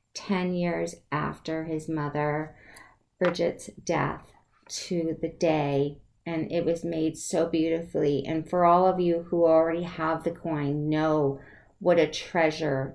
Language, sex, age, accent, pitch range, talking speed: English, female, 40-59, American, 145-170 Hz, 140 wpm